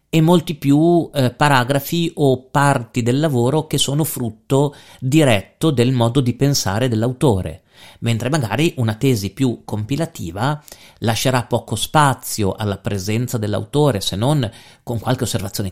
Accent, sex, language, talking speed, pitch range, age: native, male, Italian, 135 wpm, 100-135 Hz, 40-59